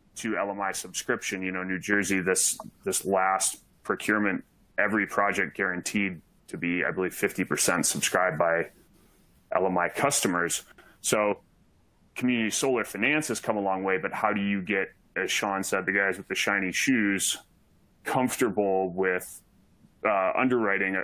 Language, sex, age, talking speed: English, male, 30-49, 145 wpm